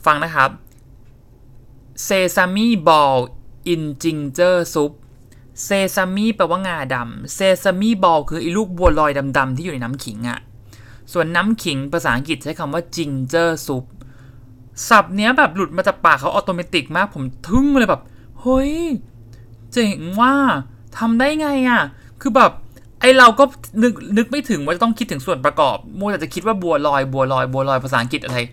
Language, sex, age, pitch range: English, male, 30-49, 130-205 Hz